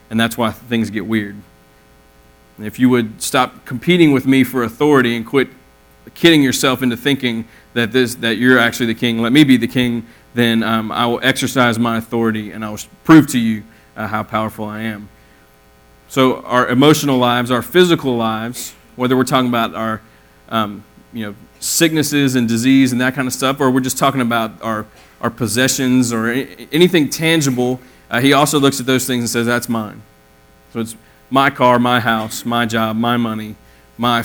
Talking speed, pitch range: 185 wpm, 110-130 Hz